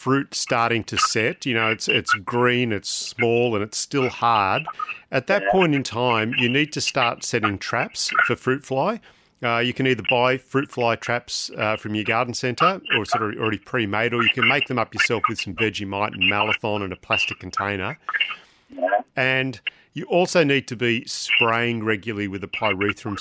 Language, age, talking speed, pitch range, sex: English, 40-59, 190 wpm, 100-125 Hz, male